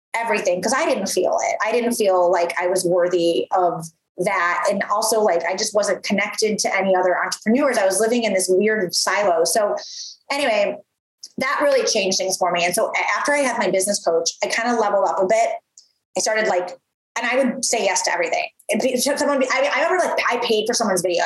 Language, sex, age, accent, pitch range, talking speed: English, female, 20-39, American, 185-270 Hz, 215 wpm